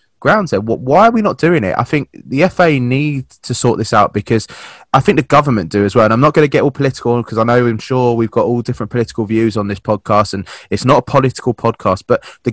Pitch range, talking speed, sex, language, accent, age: 105-130 Hz, 265 wpm, male, English, British, 20-39